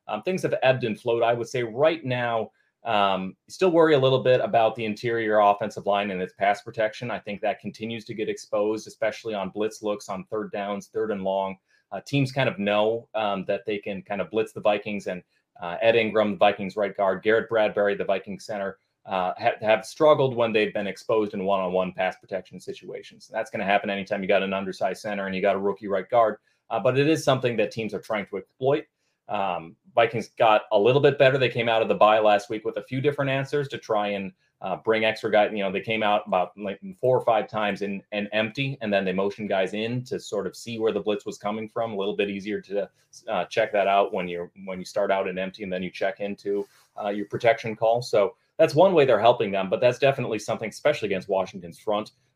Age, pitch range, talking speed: 30-49, 100-115 Hz, 235 wpm